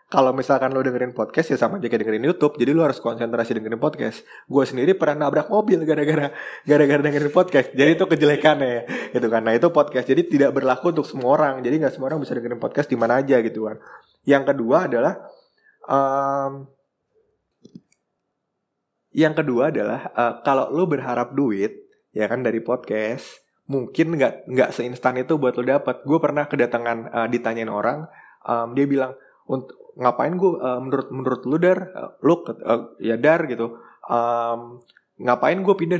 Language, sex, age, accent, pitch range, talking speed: Indonesian, male, 20-39, native, 120-150 Hz, 170 wpm